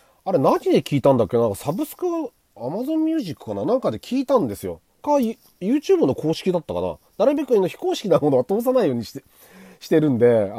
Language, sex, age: Japanese, male, 40-59